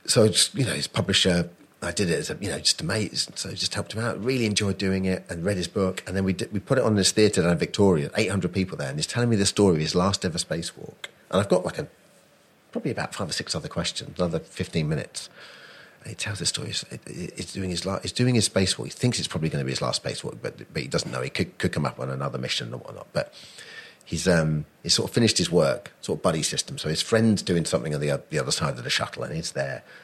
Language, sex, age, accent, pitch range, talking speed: English, male, 40-59, British, 80-105 Hz, 275 wpm